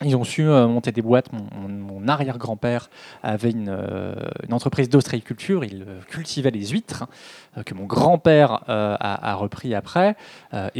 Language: French